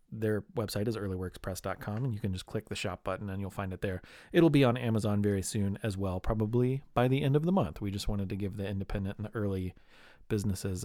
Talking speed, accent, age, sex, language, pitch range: 240 wpm, American, 30-49, male, English, 105-140 Hz